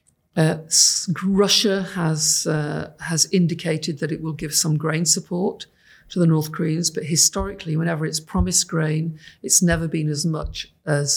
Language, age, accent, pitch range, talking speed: English, 50-69, British, 150-175 Hz, 155 wpm